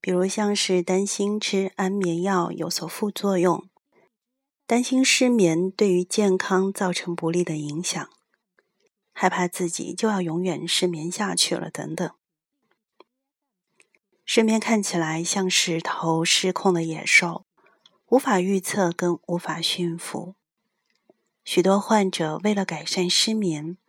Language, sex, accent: Chinese, female, native